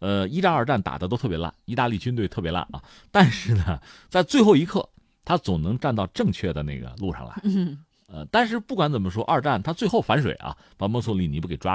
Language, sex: Chinese, male